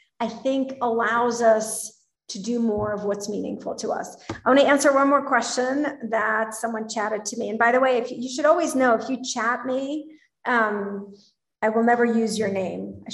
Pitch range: 215-255 Hz